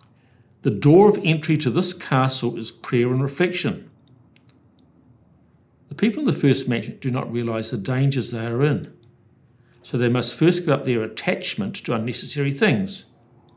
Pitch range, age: 115-140 Hz, 60-79